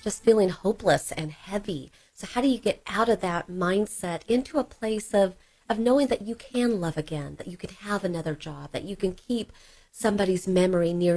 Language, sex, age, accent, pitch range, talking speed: English, female, 40-59, American, 175-220 Hz, 205 wpm